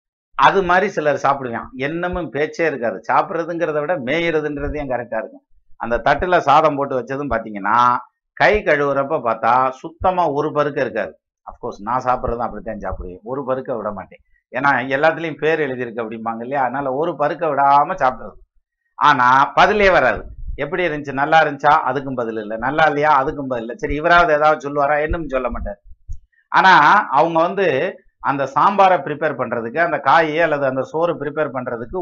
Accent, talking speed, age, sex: native, 150 wpm, 50-69, male